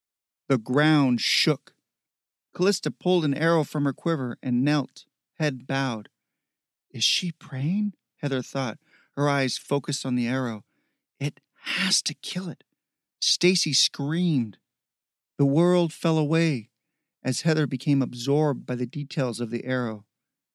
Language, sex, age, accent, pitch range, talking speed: English, male, 40-59, American, 130-150 Hz, 135 wpm